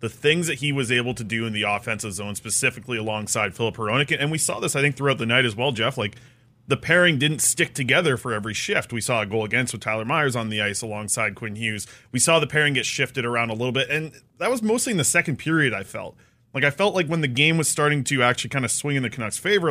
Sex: male